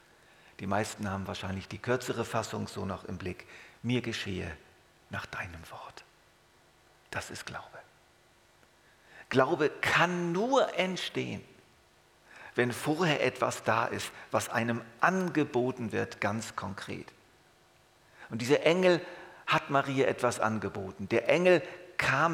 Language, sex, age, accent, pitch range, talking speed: German, male, 50-69, German, 110-160 Hz, 120 wpm